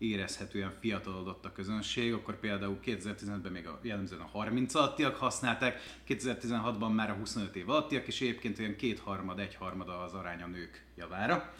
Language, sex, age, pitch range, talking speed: Hungarian, male, 30-49, 95-115 Hz, 140 wpm